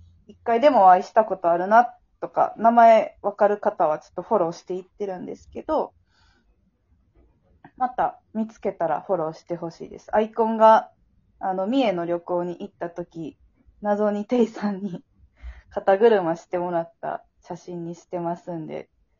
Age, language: 20-39, Japanese